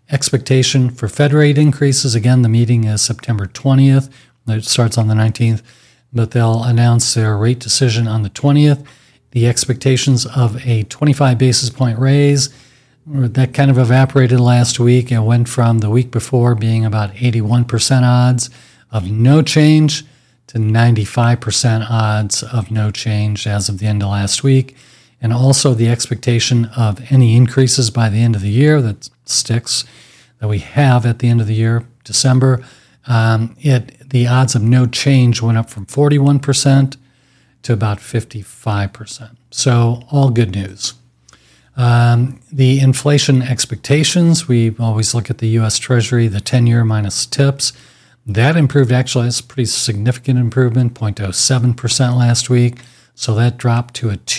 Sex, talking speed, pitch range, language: male, 155 wpm, 115-130 Hz, English